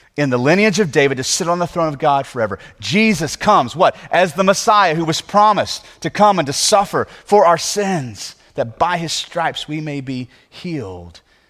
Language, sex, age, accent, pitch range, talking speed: English, male, 30-49, American, 130-180 Hz, 200 wpm